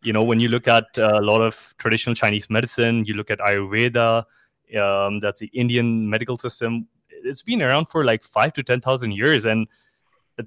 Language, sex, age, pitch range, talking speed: English, male, 20-39, 110-125 Hz, 195 wpm